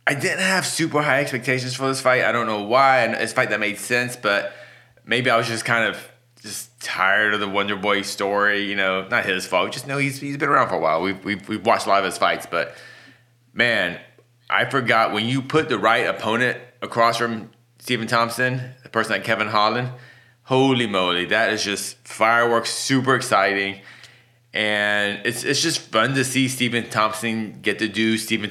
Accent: American